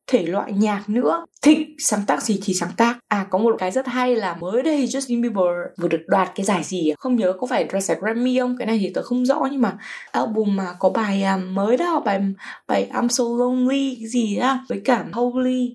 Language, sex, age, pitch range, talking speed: Vietnamese, female, 20-39, 200-260 Hz, 220 wpm